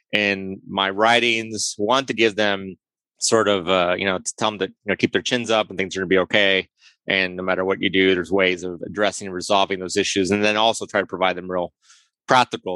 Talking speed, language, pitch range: 240 wpm, English, 95-105 Hz